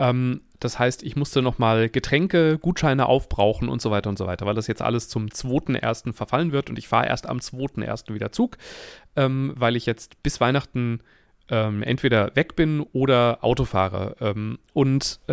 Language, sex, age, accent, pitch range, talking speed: German, male, 30-49, German, 115-150 Hz, 165 wpm